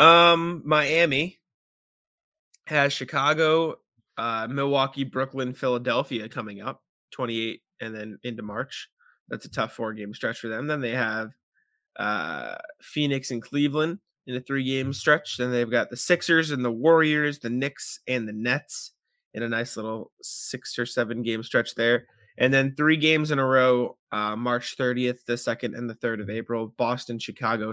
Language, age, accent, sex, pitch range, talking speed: English, 20-39, American, male, 120-145 Hz, 165 wpm